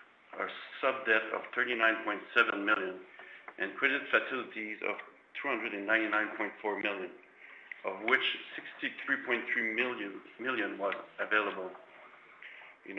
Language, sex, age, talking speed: English, male, 60-79, 90 wpm